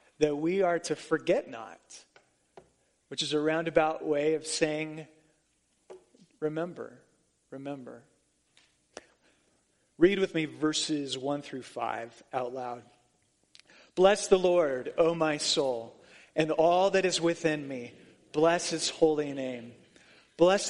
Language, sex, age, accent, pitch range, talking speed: English, male, 30-49, American, 140-170 Hz, 120 wpm